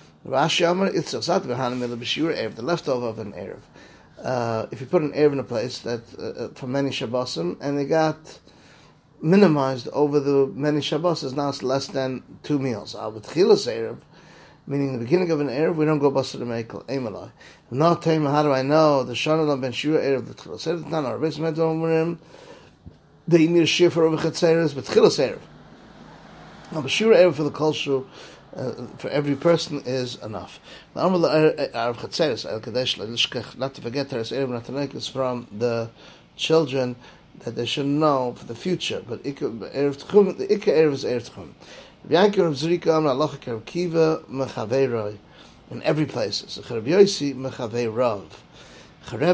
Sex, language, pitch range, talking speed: male, English, 125-160 Hz, 110 wpm